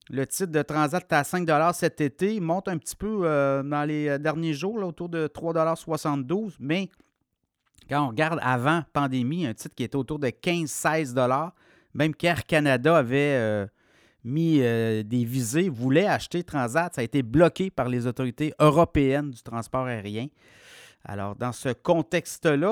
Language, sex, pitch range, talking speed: French, male, 130-165 Hz, 165 wpm